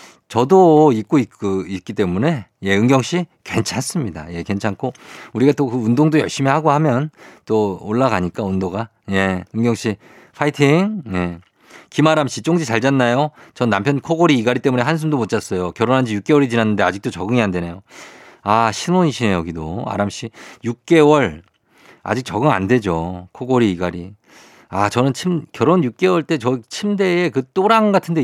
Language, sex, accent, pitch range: Korean, male, native, 100-155 Hz